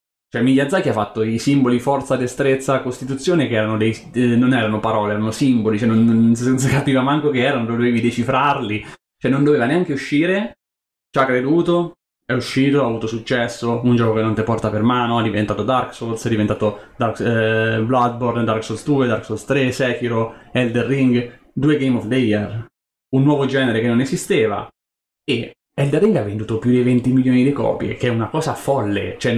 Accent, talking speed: native, 195 wpm